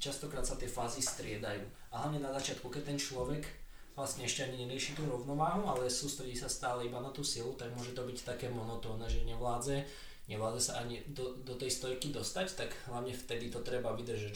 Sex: male